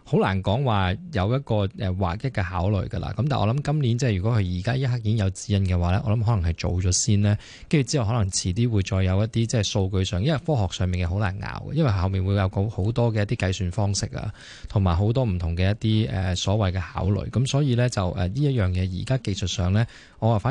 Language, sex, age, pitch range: Chinese, male, 20-39, 95-115 Hz